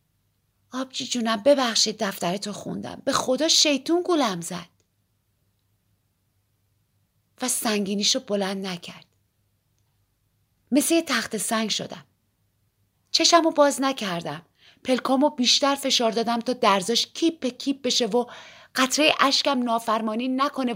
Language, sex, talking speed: Persian, female, 105 wpm